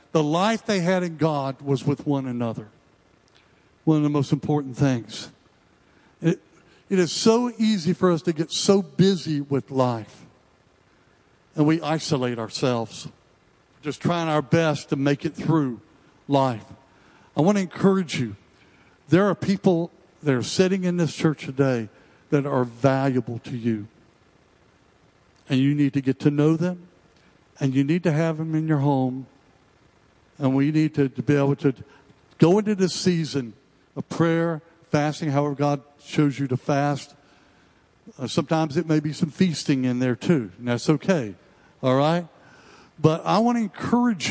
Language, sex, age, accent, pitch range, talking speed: English, male, 60-79, American, 130-165 Hz, 165 wpm